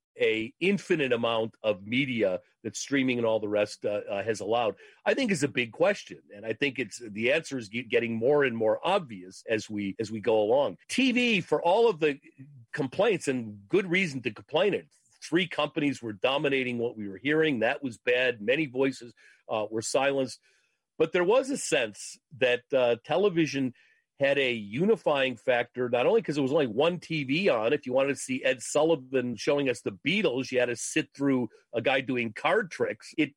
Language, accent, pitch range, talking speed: English, American, 120-165 Hz, 200 wpm